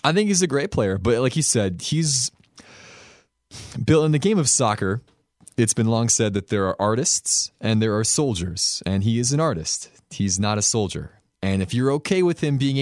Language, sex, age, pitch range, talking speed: English, male, 20-39, 95-125 Hz, 210 wpm